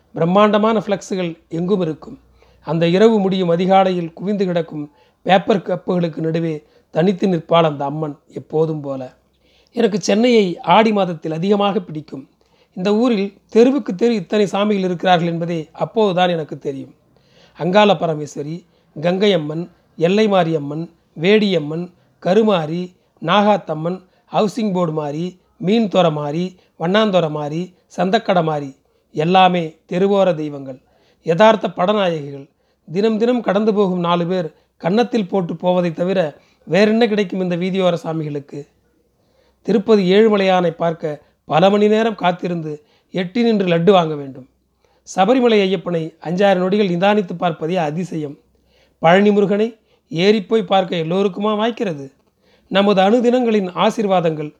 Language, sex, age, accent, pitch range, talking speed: Tamil, male, 40-59, native, 165-205 Hz, 110 wpm